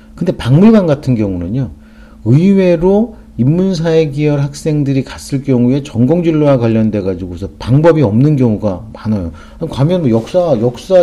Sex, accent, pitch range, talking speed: male, Korean, 100-145 Hz, 105 wpm